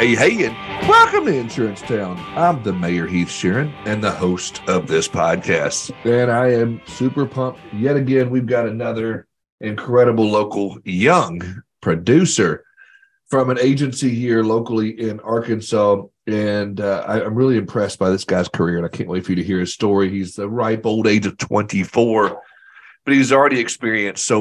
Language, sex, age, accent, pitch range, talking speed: English, male, 40-59, American, 100-120 Hz, 170 wpm